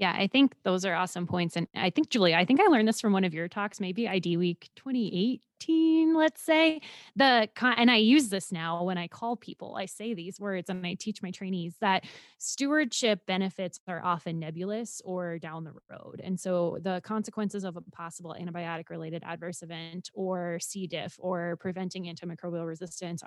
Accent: American